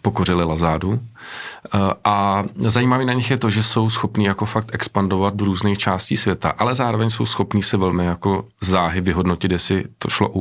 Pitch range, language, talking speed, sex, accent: 90-110 Hz, Czech, 180 wpm, male, native